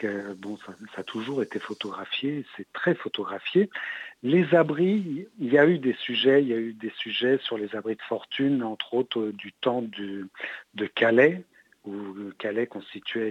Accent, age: French, 60-79